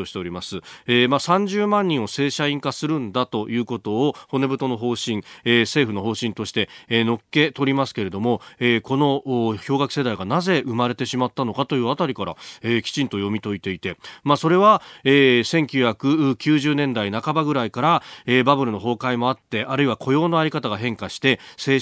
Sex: male